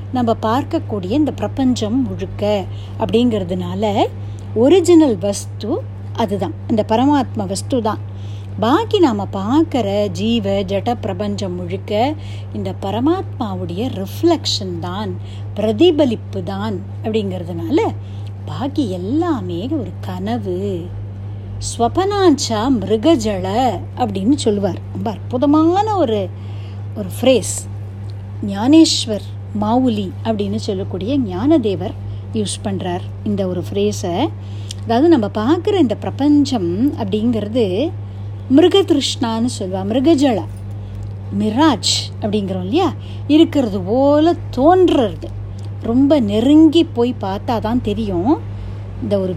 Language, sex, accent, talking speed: Tamil, female, native, 80 wpm